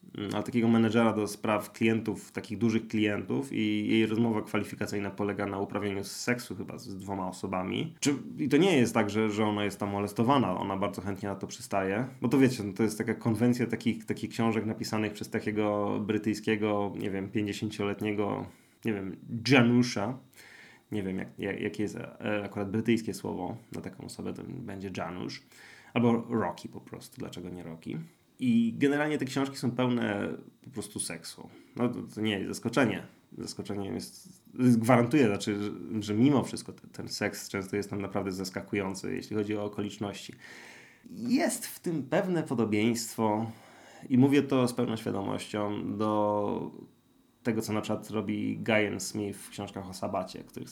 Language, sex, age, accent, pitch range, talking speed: Polish, male, 20-39, native, 100-115 Hz, 160 wpm